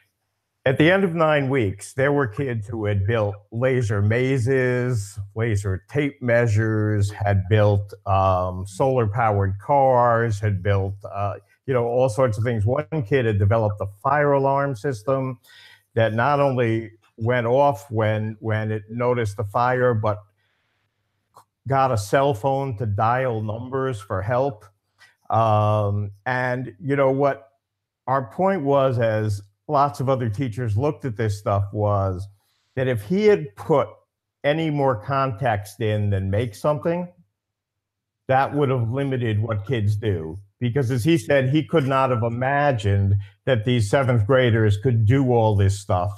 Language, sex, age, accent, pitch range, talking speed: English, male, 50-69, American, 105-135 Hz, 150 wpm